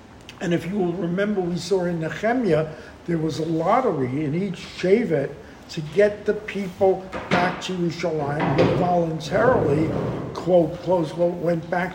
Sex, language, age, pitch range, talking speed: male, English, 60-79, 160-195 Hz, 150 wpm